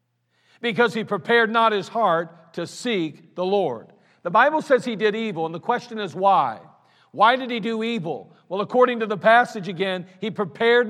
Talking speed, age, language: 185 wpm, 50-69, English